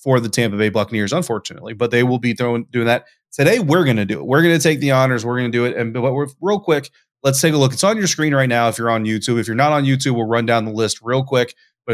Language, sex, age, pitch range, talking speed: English, male, 20-39, 115-130 Hz, 295 wpm